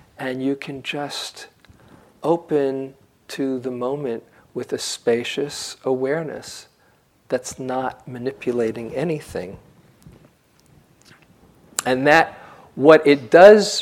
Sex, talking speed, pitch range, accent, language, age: male, 90 wpm, 120-145 Hz, American, English, 50-69